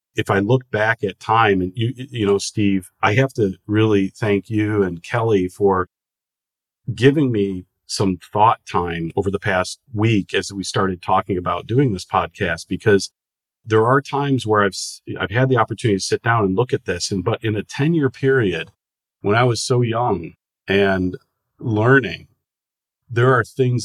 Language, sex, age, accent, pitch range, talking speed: English, male, 40-59, American, 95-120 Hz, 180 wpm